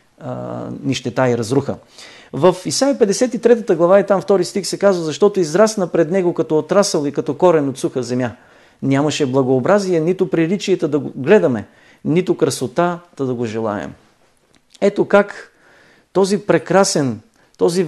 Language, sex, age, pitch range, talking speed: Bulgarian, male, 50-69, 150-185 Hz, 140 wpm